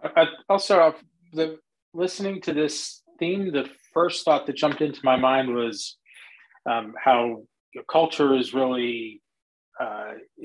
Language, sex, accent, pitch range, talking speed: English, male, American, 115-150 Hz, 120 wpm